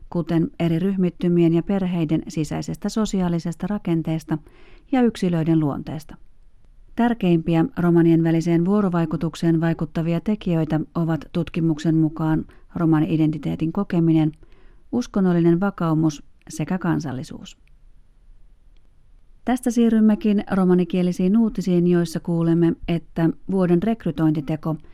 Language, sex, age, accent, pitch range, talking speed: Finnish, female, 40-59, native, 165-180 Hz, 85 wpm